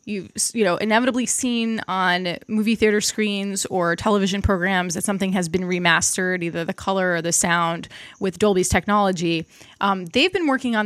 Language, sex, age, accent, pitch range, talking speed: English, female, 20-39, American, 185-225 Hz, 170 wpm